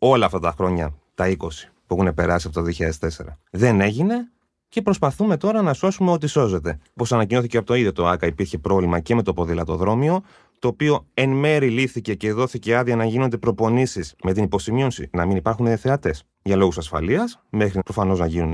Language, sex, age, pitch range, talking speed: Greek, male, 30-49, 90-125 Hz, 190 wpm